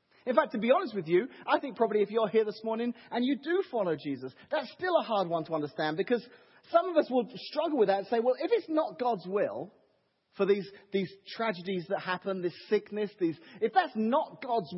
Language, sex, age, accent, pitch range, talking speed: English, male, 30-49, British, 205-285 Hz, 225 wpm